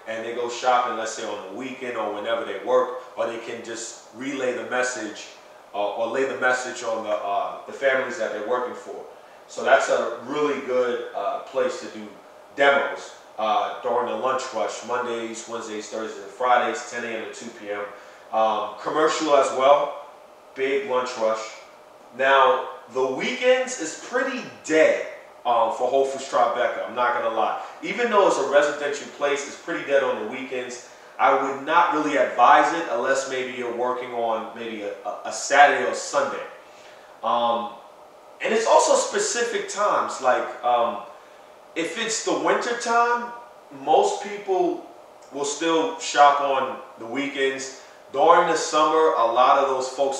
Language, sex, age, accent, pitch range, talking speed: English, male, 30-49, American, 120-150 Hz, 165 wpm